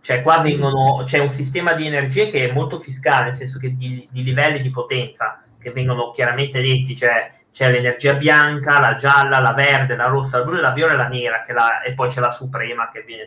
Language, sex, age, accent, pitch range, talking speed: Italian, male, 30-49, native, 125-145 Hz, 235 wpm